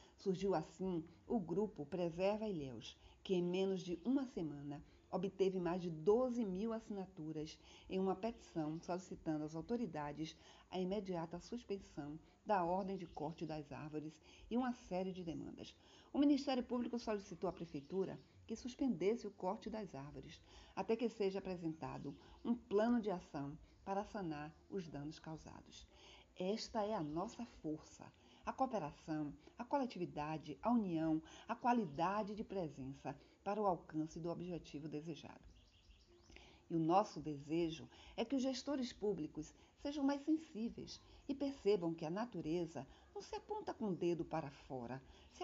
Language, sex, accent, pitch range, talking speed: Portuguese, female, Brazilian, 155-215 Hz, 145 wpm